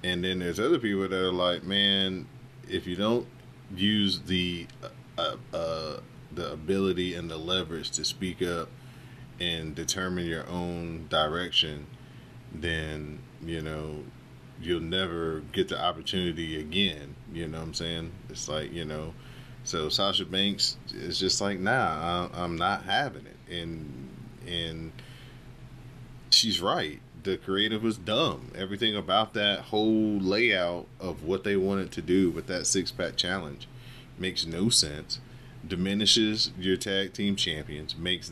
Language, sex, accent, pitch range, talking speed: English, male, American, 85-115 Hz, 140 wpm